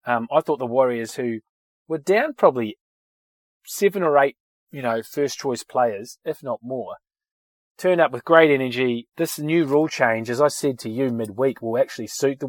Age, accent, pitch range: 30-49, Australian, 115-150 Hz